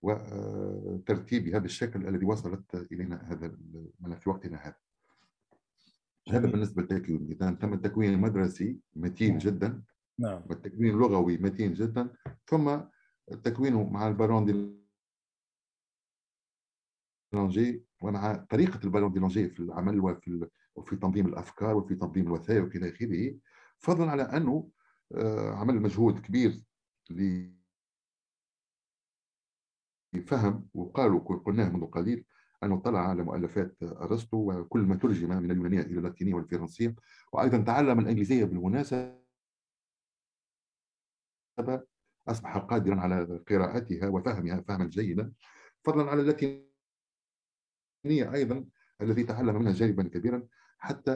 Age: 50-69